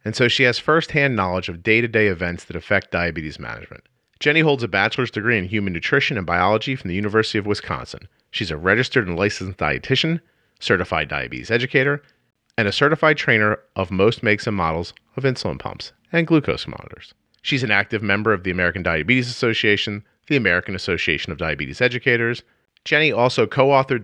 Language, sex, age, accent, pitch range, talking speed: English, male, 40-59, American, 90-125 Hz, 175 wpm